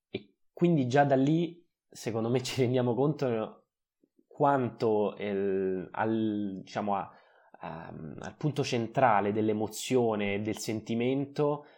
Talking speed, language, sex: 115 wpm, Italian, male